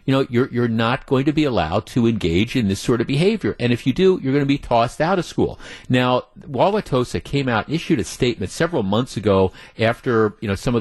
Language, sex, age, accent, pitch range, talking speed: English, male, 50-69, American, 105-150 Hz, 245 wpm